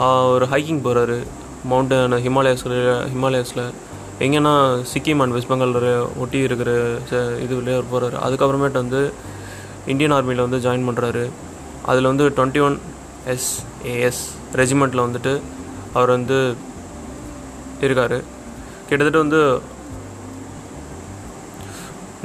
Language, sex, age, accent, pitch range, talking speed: Tamil, male, 20-39, native, 120-135 Hz, 95 wpm